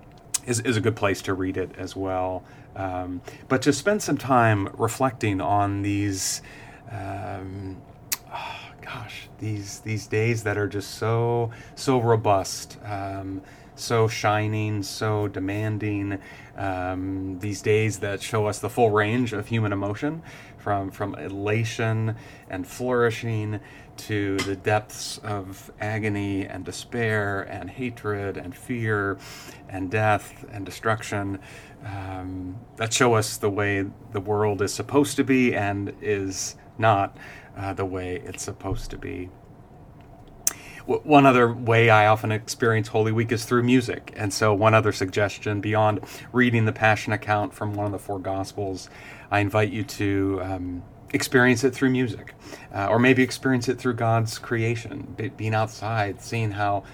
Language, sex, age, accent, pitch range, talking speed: English, male, 30-49, American, 100-120 Hz, 145 wpm